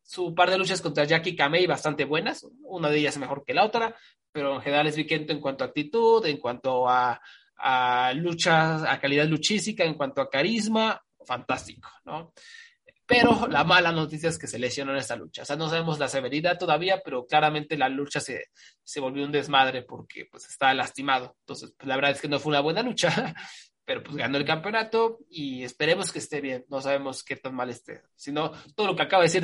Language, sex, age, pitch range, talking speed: Spanish, male, 20-39, 140-185 Hz, 215 wpm